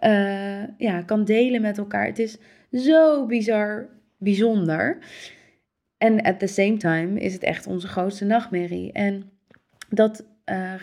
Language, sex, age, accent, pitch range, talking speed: Dutch, female, 30-49, Dutch, 180-225 Hz, 140 wpm